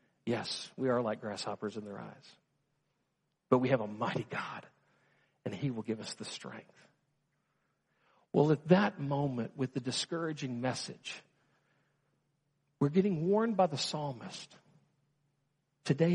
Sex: male